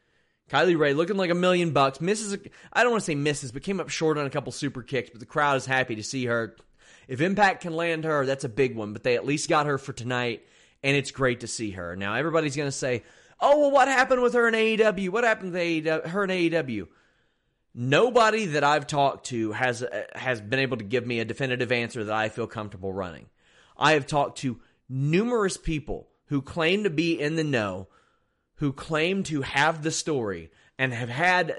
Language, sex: English, male